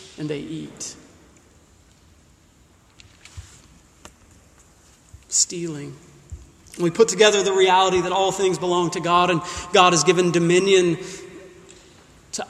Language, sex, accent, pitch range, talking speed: English, male, American, 165-210 Hz, 100 wpm